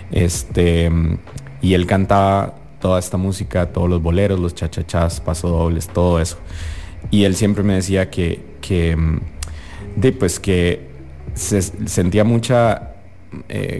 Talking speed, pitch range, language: 125 wpm, 85-100 Hz, English